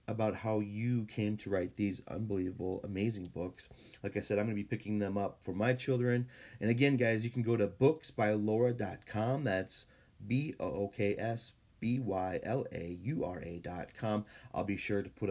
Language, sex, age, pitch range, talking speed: English, male, 30-49, 100-120 Hz, 155 wpm